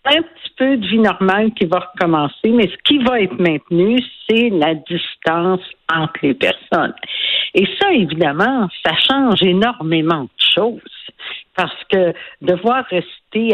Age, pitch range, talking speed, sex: 60-79, 155-200 Hz, 145 wpm, female